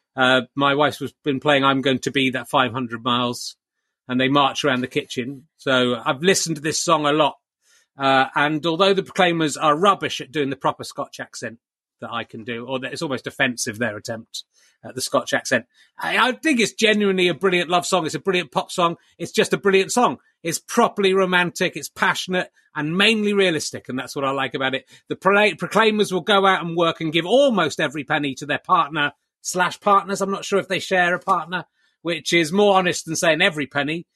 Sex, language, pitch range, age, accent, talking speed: male, English, 145-195 Hz, 30-49, British, 215 wpm